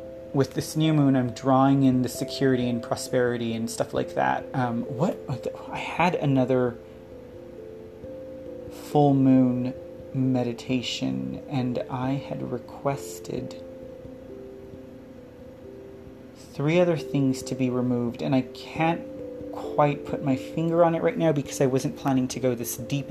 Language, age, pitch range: English, 30-49, 120-145 Hz